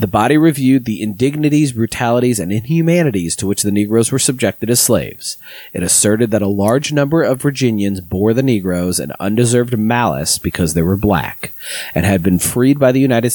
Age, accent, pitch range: 30-49, American, 100-130 Hz